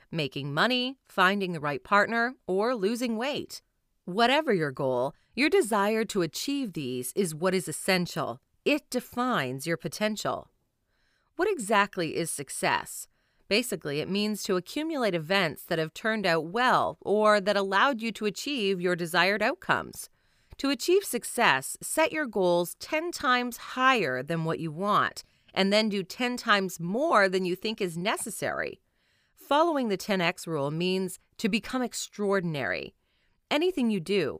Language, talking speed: English, 145 wpm